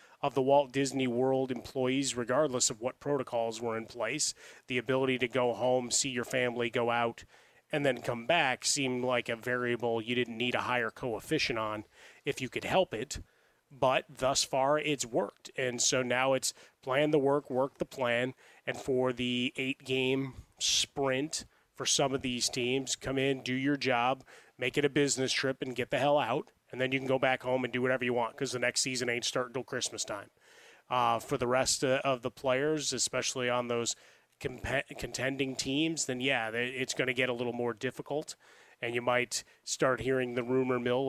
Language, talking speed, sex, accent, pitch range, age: English, 195 wpm, male, American, 125-135 Hz, 30-49